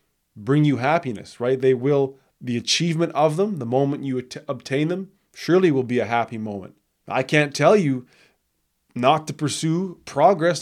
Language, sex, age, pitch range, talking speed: English, male, 20-39, 130-155 Hz, 165 wpm